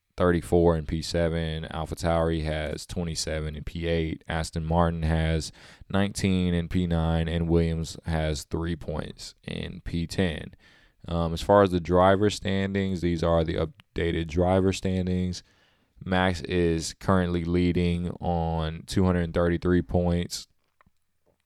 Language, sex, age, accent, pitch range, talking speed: English, male, 20-39, American, 80-90 Hz, 115 wpm